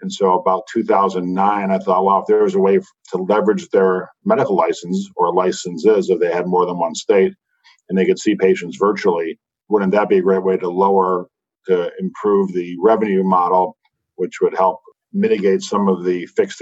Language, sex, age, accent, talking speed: English, male, 50-69, American, 190 wpm